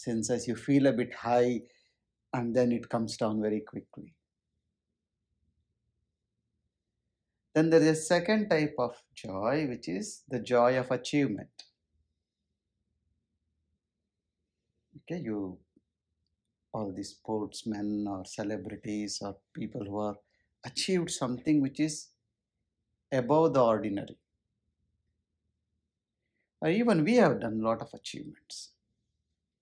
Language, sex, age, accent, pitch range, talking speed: English, male, 60-79, Indian, 95-125 Hz, 110 wpm